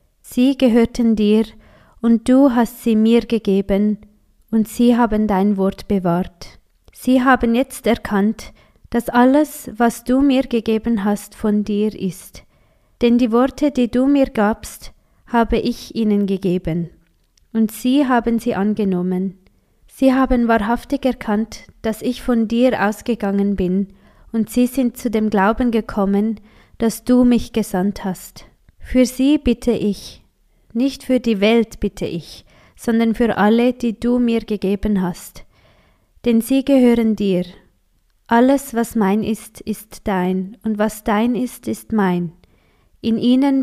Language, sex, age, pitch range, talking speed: German, female, 20-39, 200-240 Hz, 140 wpm